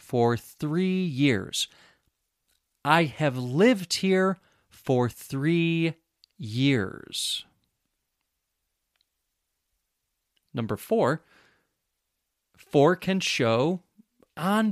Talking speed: 65 wpm